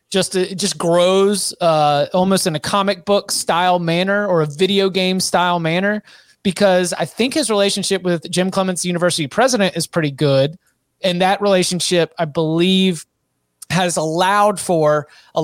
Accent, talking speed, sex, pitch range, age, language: American, 155 wpm, male, 160-195 Hz, 30-49, English